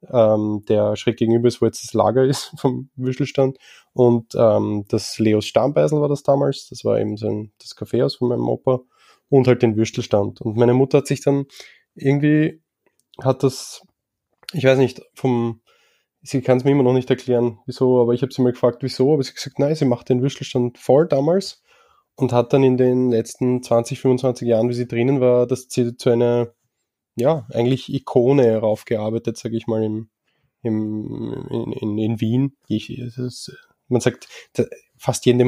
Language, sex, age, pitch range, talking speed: German, male, 20-39, 115-135 Hz, 180 wpm